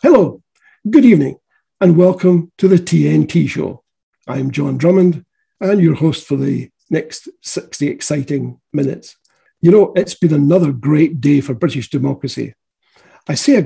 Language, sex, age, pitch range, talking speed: English, male, 60-79, 140-180 Hz, 150 wpm